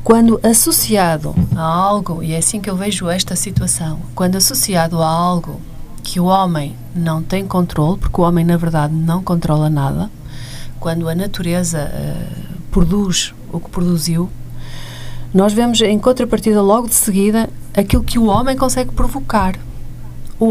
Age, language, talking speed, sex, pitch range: 40-59, Portuguese, 150 wpm, female, 135-220 Hz